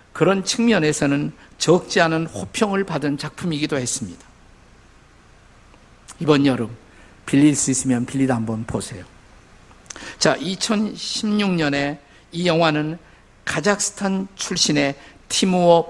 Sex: male